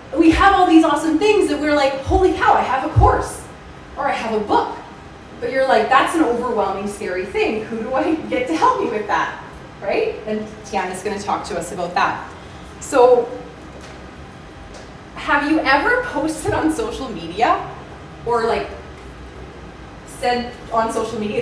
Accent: American